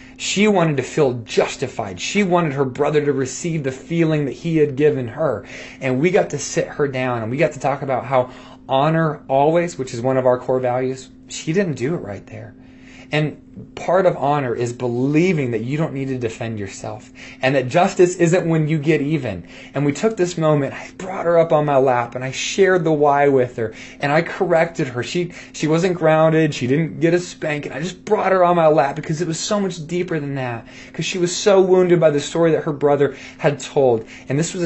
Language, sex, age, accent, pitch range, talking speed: English, male, 20-39, American, 130-165 Hz, 230 wpm